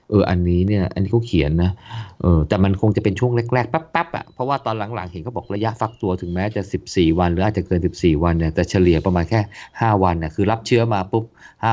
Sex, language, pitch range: male, Thai, 85-105 Hz